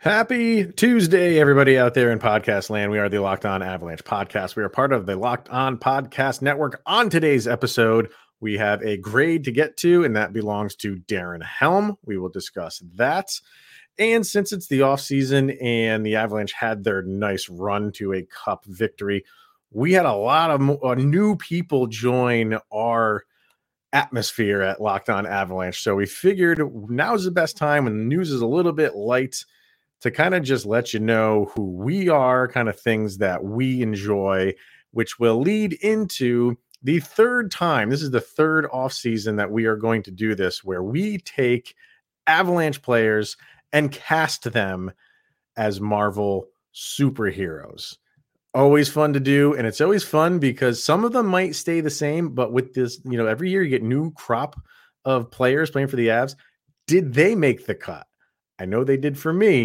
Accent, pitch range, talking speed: American, 105-155 Hz, 180 wpm